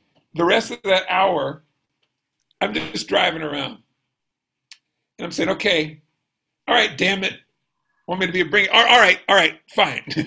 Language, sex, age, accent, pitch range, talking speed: English, male, 50-69, American, 140-170 Hz, 165 wpm